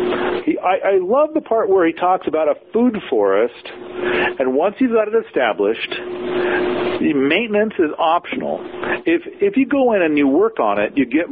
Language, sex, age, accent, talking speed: English, male, 50-69, American, 180 wpm